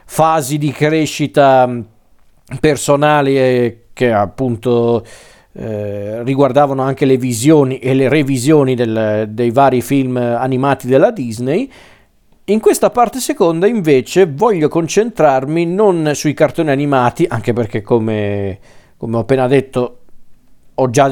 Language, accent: Italian, native